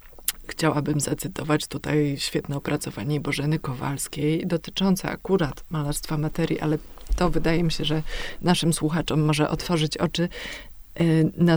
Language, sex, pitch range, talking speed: Polish, female, 150-170 Hz, 120 wpm